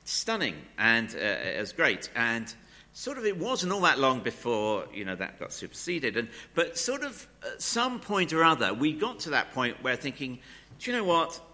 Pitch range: 100-165 Hz